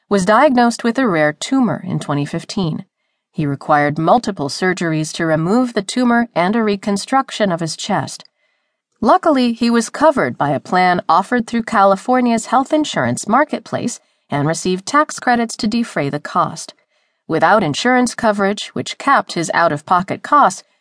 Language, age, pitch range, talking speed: English, 40-59, 160-240 Hz, 145 wpm